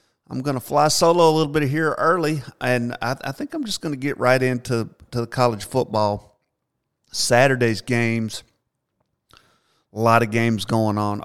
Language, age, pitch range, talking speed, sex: English, 50-69, 110-130 Hz, 180 wpm, male